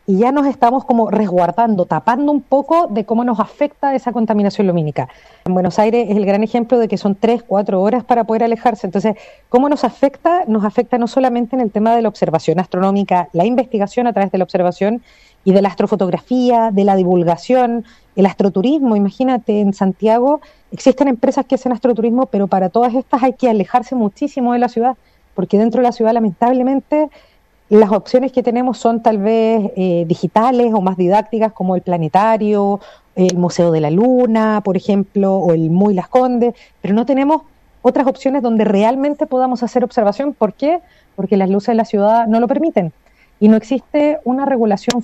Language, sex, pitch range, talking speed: Spanish, female, 200-255 Hz, 190 wpm